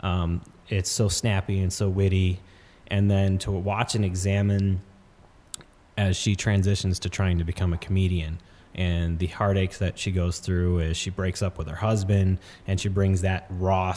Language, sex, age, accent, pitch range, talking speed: English, male, 30-49, American, 90-100 Hz, 170 wpm